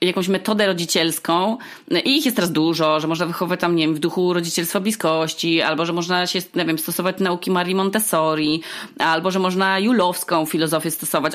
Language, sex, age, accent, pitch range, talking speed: Polish, female, 20-39, native, 160-205 Hz, 180 wpm